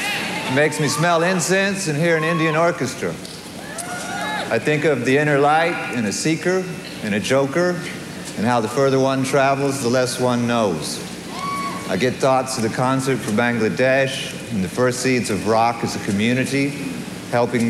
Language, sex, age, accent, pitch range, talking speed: Dutch, male, 50-69, American, 110-135 Hz, 170 wpm